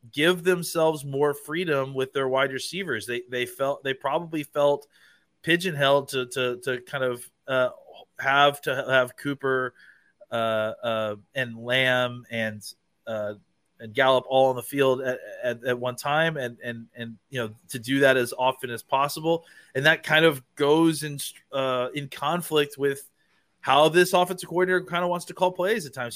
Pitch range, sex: 125-155 Hz, male